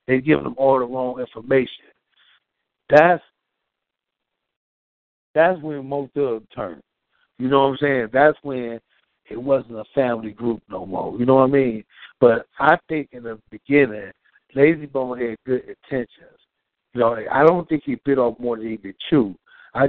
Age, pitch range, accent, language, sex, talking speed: 60-79, 115-140 Hz, American, English, male, 180 wpm